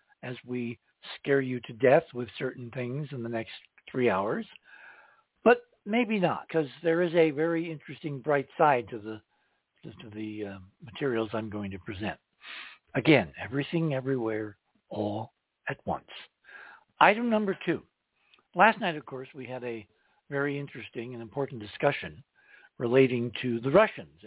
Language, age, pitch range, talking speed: English, 60-79, 120-155 Hz, 150 wpm